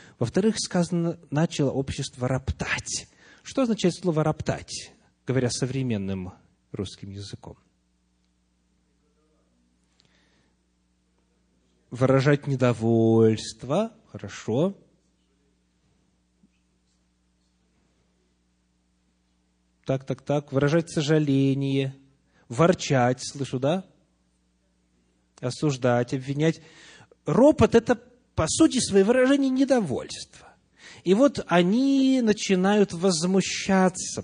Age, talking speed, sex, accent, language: 30-49, 65 wpm, male, native, Russian